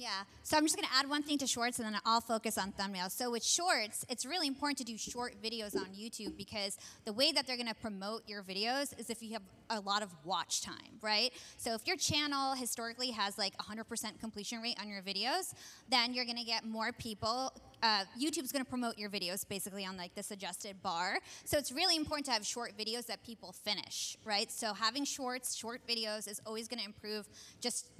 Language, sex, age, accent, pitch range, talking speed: English, female, 20-39, American, 215-265 Hz, 225 wpm